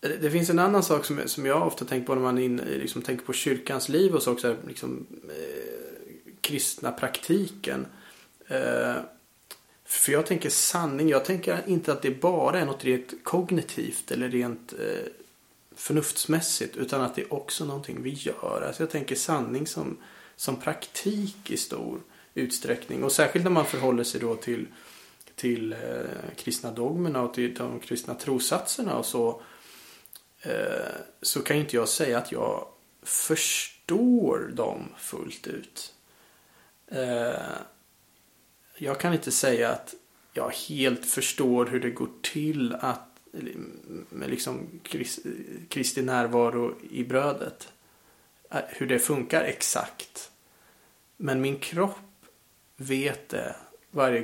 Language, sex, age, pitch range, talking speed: Swedish, male, 30-49, 125-175 Hz, 135 wpm